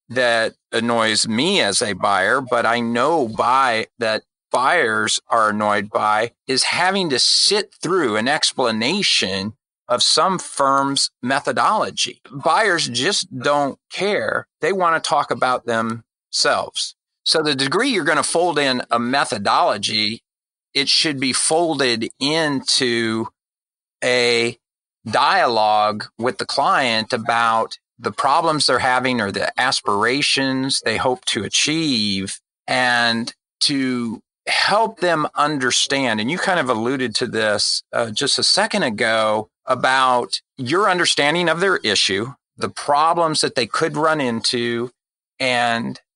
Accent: American